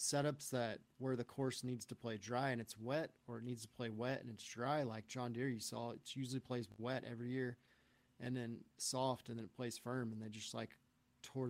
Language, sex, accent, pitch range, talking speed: English, male, American, 115-130 Hz, 235 wpm